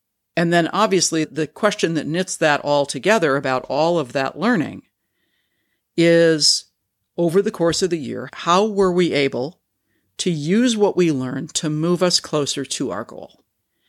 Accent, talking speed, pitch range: American, 165 wpm, 145-185 Hz